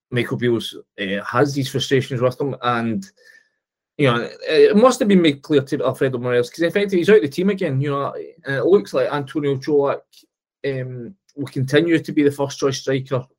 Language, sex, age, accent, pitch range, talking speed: English, male, 20-39, British, 125-150 Hz, 200 wpm